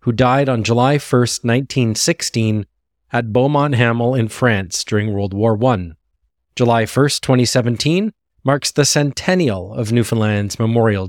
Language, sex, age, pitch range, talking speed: English, male, 20-39, 100-140 Hz, 130 wpm